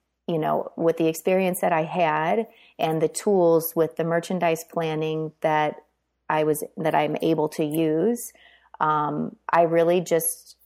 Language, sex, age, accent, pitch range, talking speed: English, female, 30-49, American, 155-175 Hz, 150 wpm